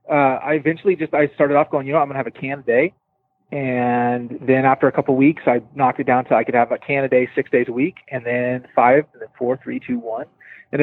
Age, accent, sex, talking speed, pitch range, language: 30-49, American, male, 270 wpm, 130-160 Hz, English